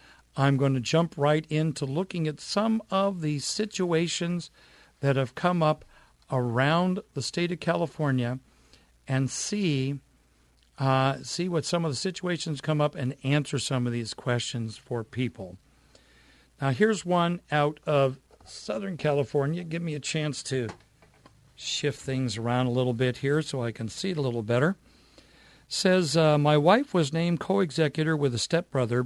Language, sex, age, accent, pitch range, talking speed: English, male, 50-69, American, 125-160 Hz, 155 wpm